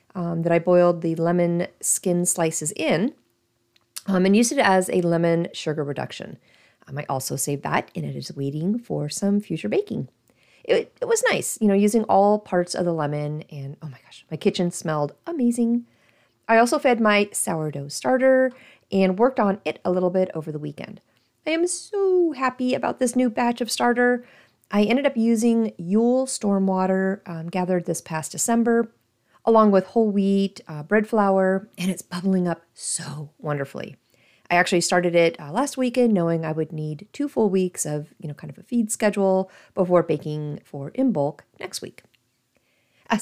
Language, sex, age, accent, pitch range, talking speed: English, female, 30-49, American, 165-235 Hz, 180 wpm